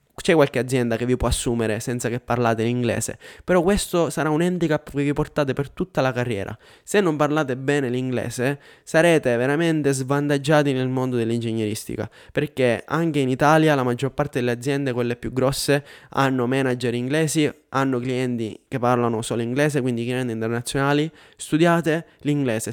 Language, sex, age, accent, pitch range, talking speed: Italian, male, 20-39, native, 125-145 Hz, 160 wpm